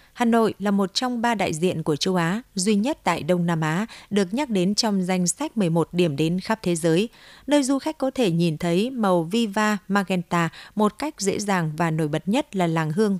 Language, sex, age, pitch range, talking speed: Vietnamese, female, 20-39, 180-225 Hz, 225 wpm